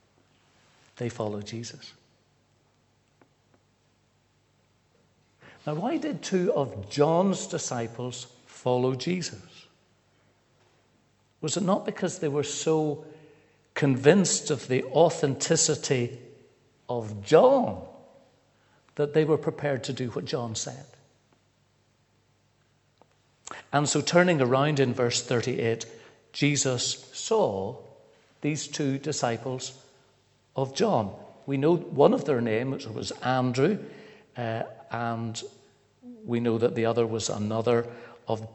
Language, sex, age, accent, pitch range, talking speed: English, male, 60-79, British, 115-145 Hz, 105 wpm